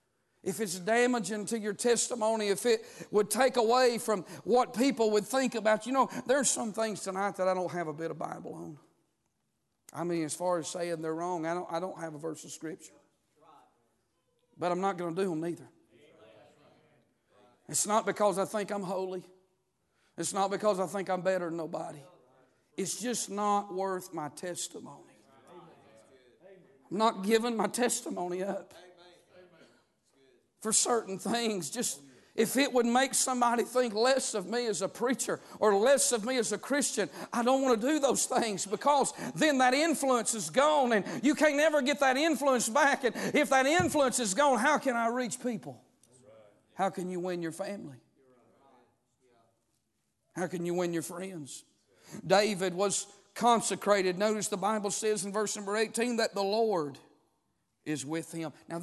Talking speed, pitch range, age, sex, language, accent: 170 wpm, 170-235 Hz, 50-69, male, English, American